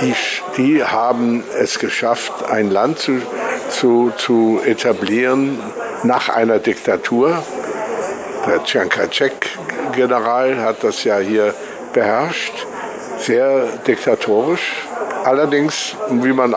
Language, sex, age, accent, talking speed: German, male, 60-79, German, 90 wpm